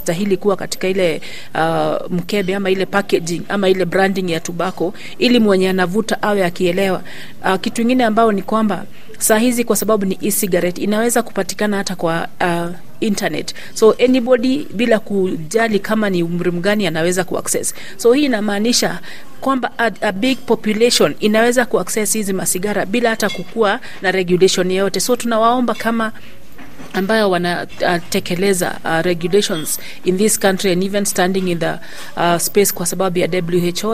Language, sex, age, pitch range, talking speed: Swahili, female, 40-59, 180-210 Hz, 145 wpm